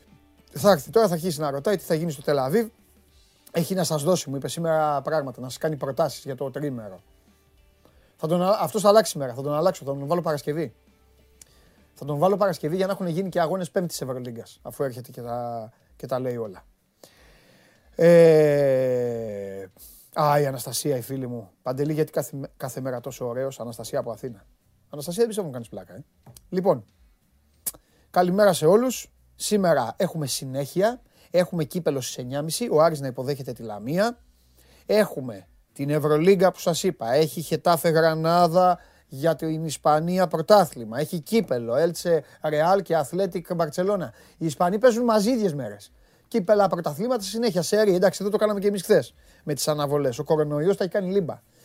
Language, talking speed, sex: Greek, 165 wpm, male